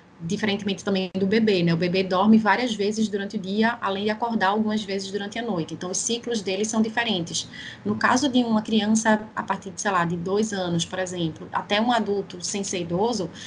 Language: Portuguese